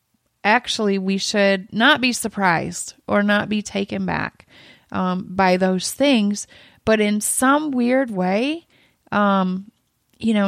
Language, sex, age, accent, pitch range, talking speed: English, female, 30-49, American, 195-225 Hz, 130 wpm